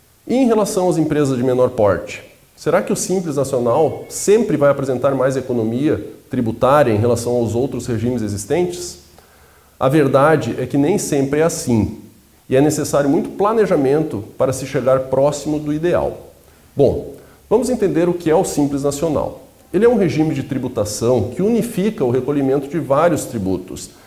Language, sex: Portuguese, male